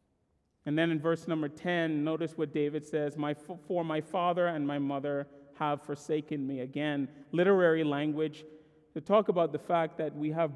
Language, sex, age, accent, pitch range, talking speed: English, male, 30-49, American, 135-155 Hz, 175 wpm